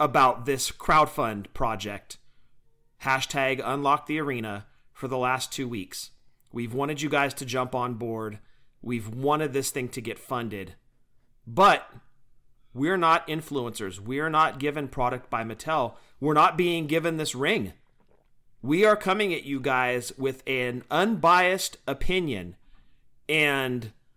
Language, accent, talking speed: English, American, 140 wpm